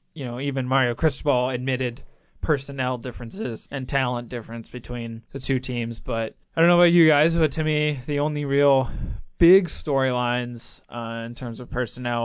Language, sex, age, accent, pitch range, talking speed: English, male, 20-39, American, 115-140 Hz, 170 wpm